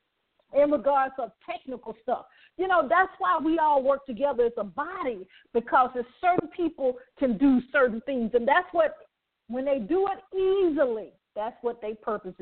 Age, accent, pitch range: 40-59, American, 240-335 Hz